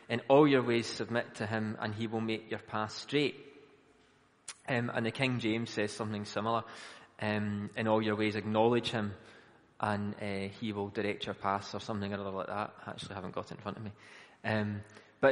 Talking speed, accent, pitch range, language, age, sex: 210 wpm, British, 105-125 Hz, English, 20-39, male